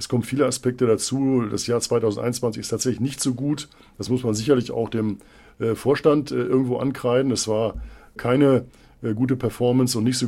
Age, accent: 50-69, German